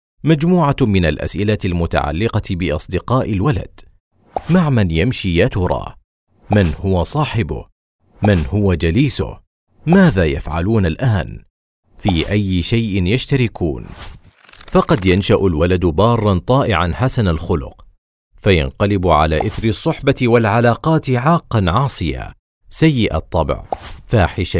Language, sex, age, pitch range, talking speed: Arabic, male, 40-59, 85-115 Hz, 100 wpm